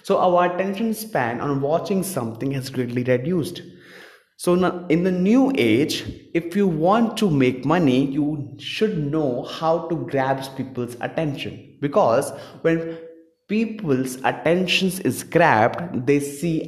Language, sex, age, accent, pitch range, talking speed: English, male, 20-39, Indian, 125-165 Hz, 135 wpm